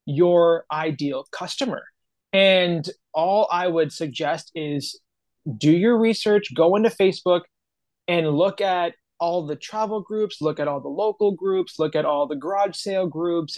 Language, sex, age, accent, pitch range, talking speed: English, male, 20-39, American, 155-195 Hz, 155 wpm